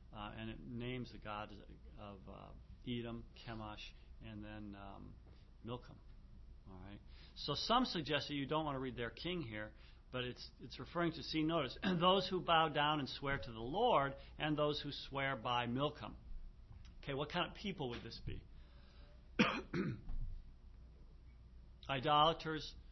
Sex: male